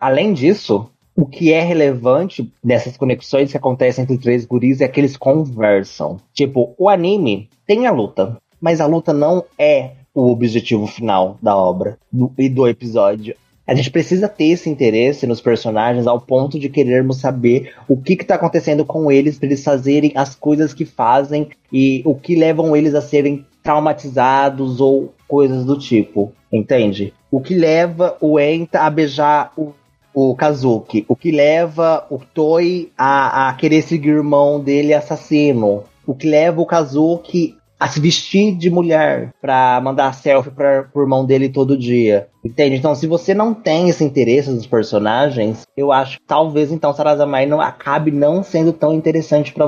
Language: Portuguese